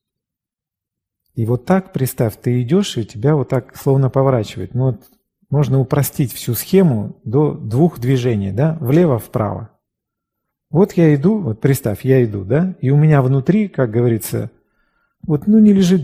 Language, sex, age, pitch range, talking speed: Russian, male, 40-59, 125-180 Hz, 155 wpm